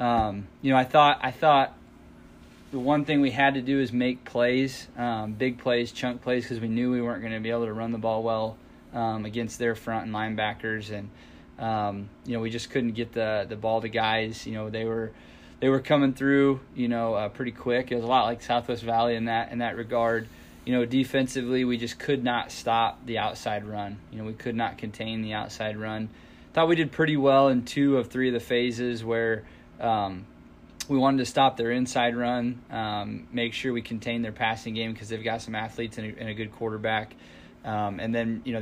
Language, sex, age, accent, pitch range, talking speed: English, male, 20-39, American, 110-125 Hz, 225 wpm